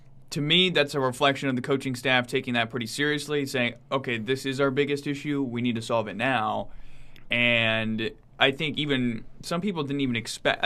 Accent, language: American, English